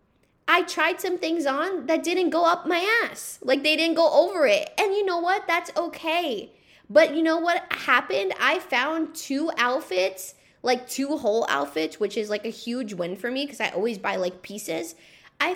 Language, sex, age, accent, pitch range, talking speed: English, female, 10-29, American, 240-330 Hz, 195 wpm